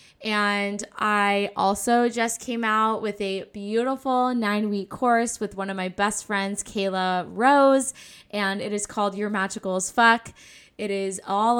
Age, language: 10-29, English